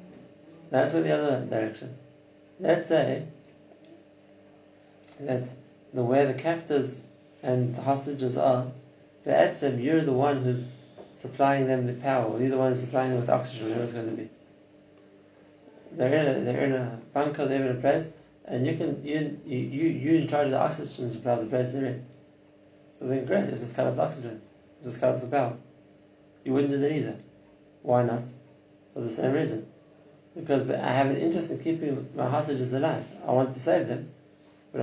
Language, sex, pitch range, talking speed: English, male, 125-145 Hz, 190 wpm